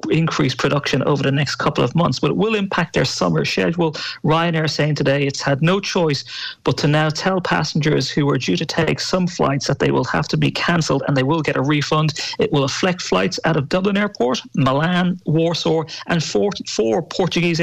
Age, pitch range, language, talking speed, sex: 40-59, 140-170 Hz, English, 210 wpm, male